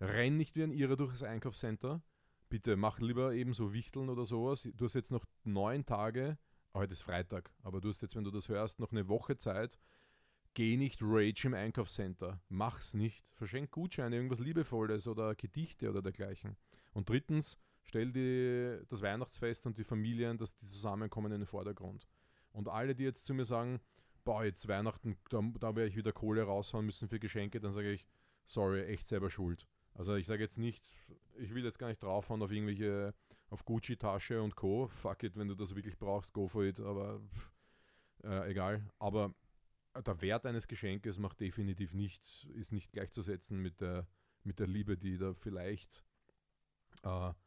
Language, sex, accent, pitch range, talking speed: German, male, Austrian, 100-115 Hz, 180 wpm